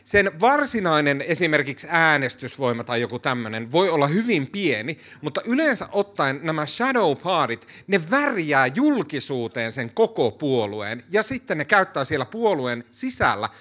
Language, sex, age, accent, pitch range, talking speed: Finnish, male, 30-49, native, 130-190 Hz, 130 wpm